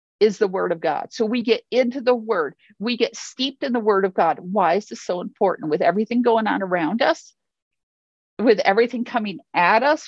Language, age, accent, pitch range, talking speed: English, 50-69, American, 200-250 Hz, 210 wpm